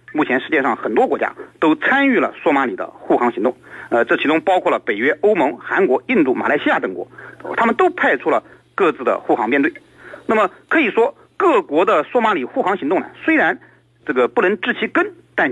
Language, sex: Chinese, male